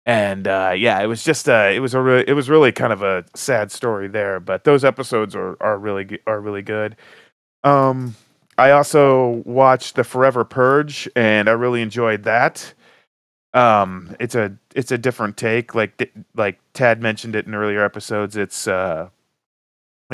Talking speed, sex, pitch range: 175 wpm, male, 95-120 Hz